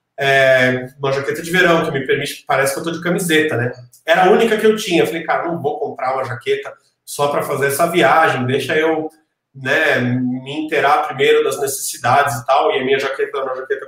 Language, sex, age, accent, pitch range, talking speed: Portuguese, male, 40-59, Brazilian, 135-190 Hz, 215 wpm